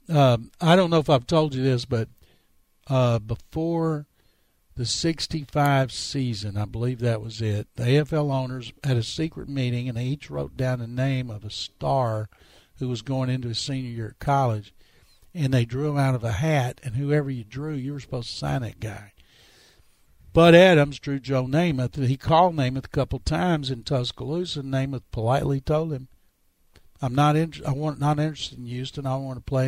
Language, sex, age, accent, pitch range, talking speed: English, male, 60-79, American, 120-145 Hz, 200 wpm